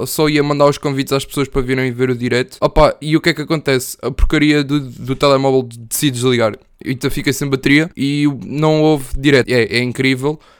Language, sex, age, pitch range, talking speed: Portuguese, male, 20-39, 130-155 Hz, 210 wpm